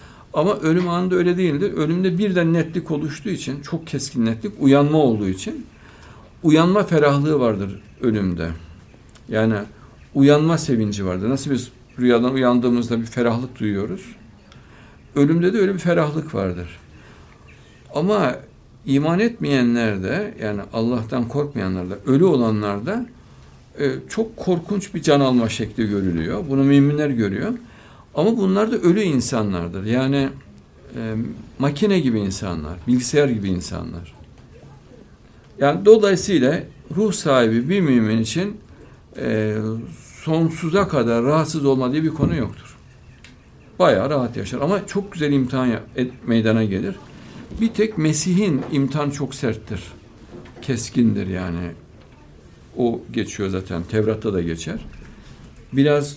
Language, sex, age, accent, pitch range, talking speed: Turkish, male, 60-79, native, 110-155 Hz, 120 wpm